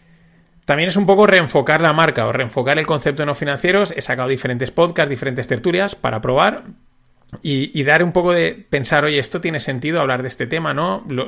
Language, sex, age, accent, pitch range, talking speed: Spanish, male, 30-49, Spanish, 130-165 Hz, 205 wpm